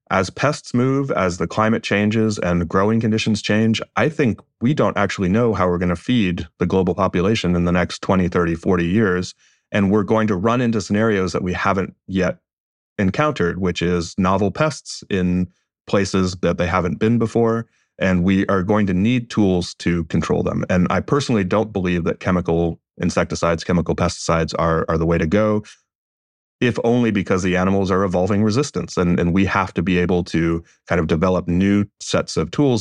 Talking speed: 190 wpm